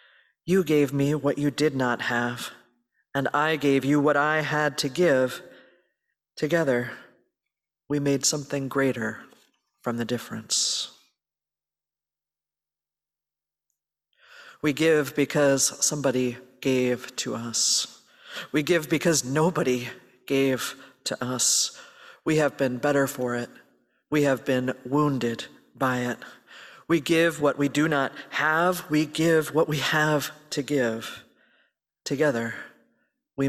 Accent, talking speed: American, 120 wpm